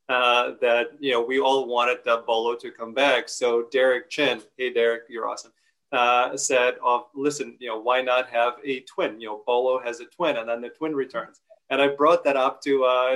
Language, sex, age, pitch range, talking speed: English, male, 30-49, 120-145 Hz, 220 wpm